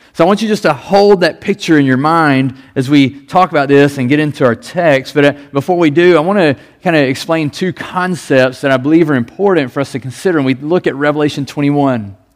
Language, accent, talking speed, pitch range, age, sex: English, American, 240 wpm, 140-175 Hz, 40-59, male